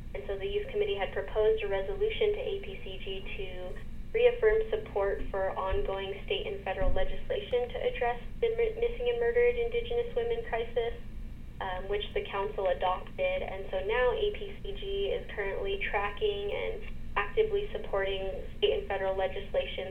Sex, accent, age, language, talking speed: female, American, 10-29, English, 145 wpm